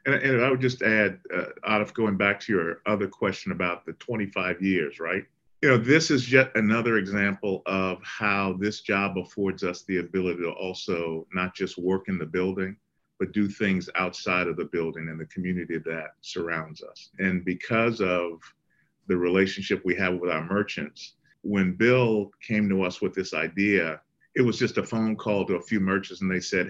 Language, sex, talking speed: English, male, 190 wpm